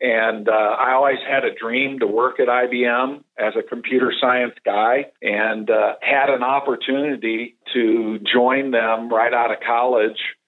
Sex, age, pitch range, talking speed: male, 50-69, 115-125 Hz, 160 wpm